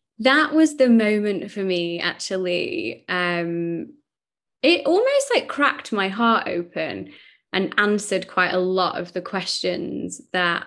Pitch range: 175-205 Hz